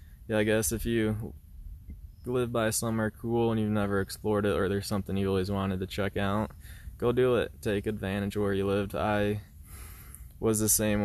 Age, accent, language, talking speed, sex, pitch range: 20-39, American, English, 195 wpm, male, 90-105 Hz